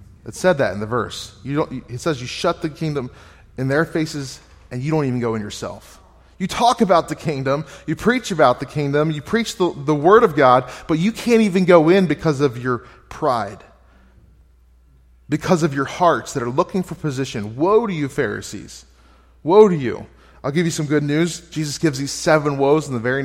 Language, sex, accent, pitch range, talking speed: English, male, American, 120-160 Hz, 205 wpm